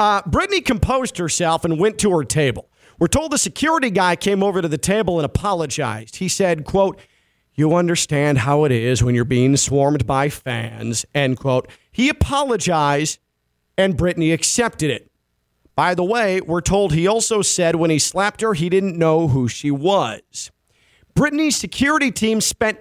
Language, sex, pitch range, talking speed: English, male, 145-210 Hz, 170 wpm